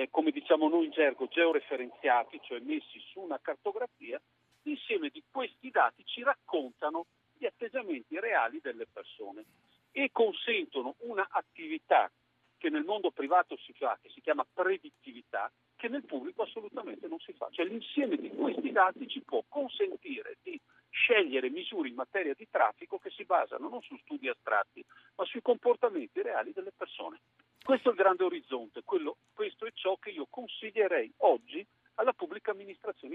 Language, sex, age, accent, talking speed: Italian, male, 50-69, native, 155 wpm